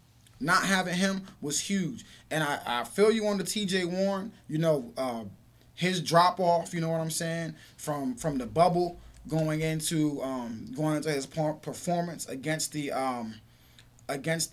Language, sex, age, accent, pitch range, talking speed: English, male, 20-39, American, 140-195 Hz, 165 wpm